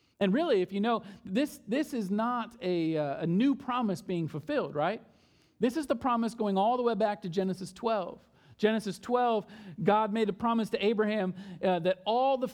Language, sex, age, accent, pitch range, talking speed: English, male, 40-59, American, 195-265 Hz, 190 wpm